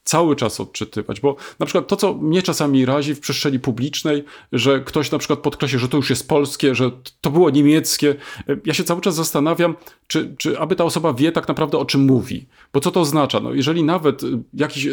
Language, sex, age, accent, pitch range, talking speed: Polish, male, 40-59, native, 135-175 Hz, 205 wpm